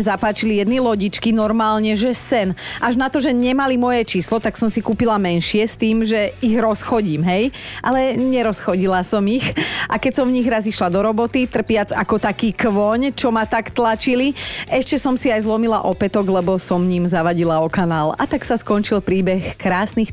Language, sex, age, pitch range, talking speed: Slovak, female, 30-49, 185-235 Hz, 190 wpm